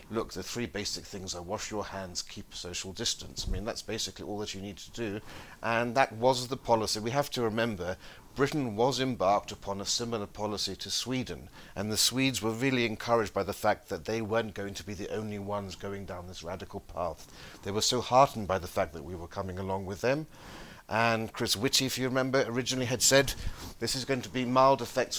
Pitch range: 100-125 Hz